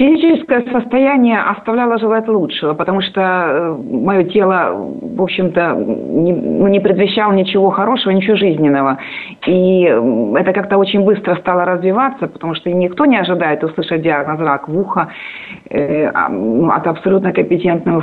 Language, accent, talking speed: Russian, native, 130 wpm